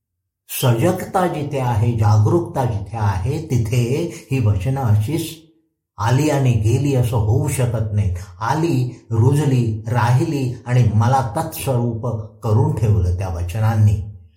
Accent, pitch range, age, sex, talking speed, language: native, 105-135 Hz, 50-69, male, 90 wpm, Marathi